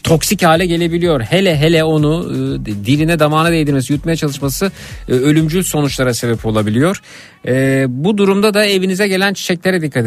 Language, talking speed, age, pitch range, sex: Turkish, 150 wpm, 50-69, 125-160 Hz, male